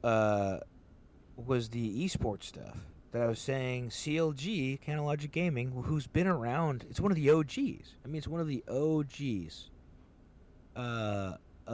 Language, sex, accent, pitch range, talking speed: English, male, American, 95-150 Hz, 145 wpm